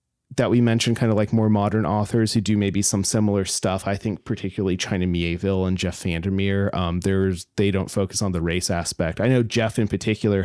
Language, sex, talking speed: English, male, 215 wpm